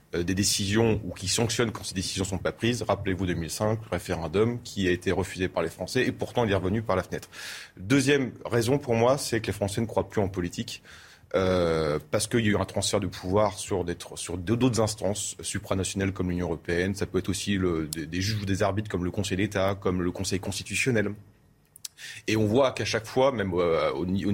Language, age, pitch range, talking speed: French, 30-49, 90-115 Hz, 220 wpm